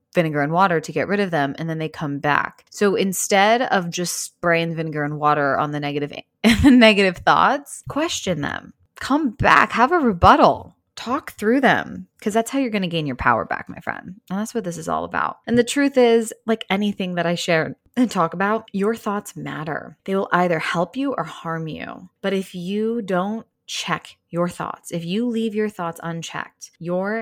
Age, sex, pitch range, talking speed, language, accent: 20-39, female, 160-205 Hz, 205 wpm, English, American